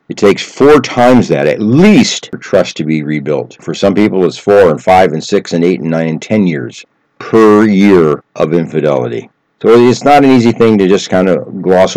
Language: English